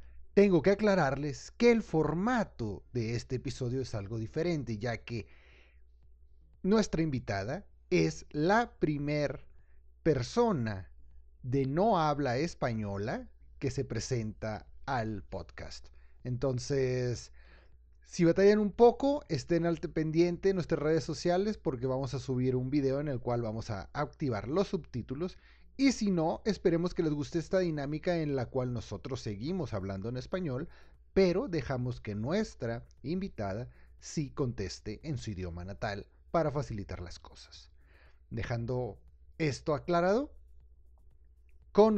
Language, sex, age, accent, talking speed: Spanish, male, 40-59, Mexican, 130 wpm